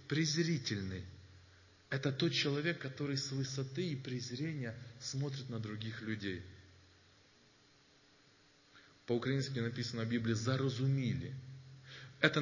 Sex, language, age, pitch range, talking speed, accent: male, Russian, 20-39, 115-150 Hz, 90 wpm, native